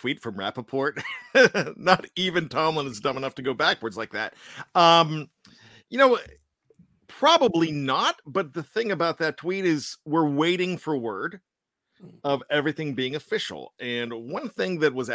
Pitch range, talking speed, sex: 135-175 Hz, 155 wpm, male